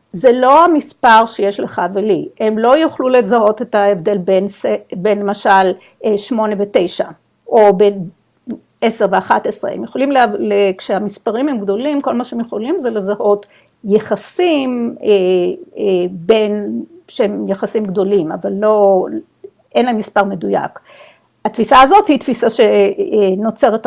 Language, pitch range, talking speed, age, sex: Hebrew, 205-260 Hz, 120 wpm, 50-69, female